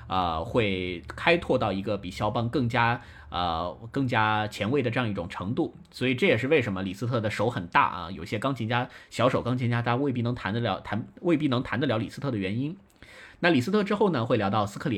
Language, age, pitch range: Chinese, 20-39, 100-125 Hz